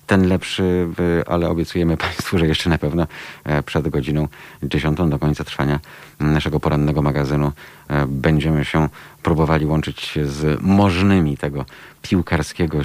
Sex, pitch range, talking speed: male, 70-80 Hz, 120 wpm